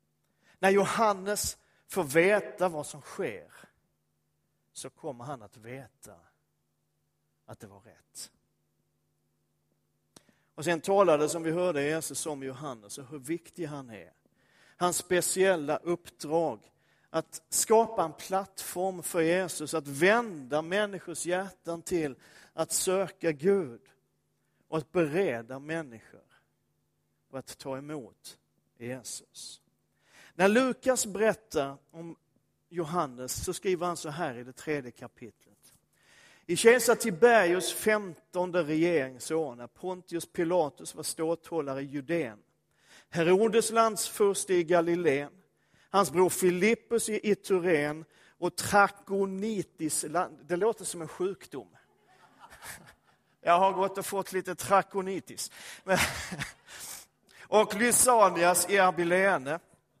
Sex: male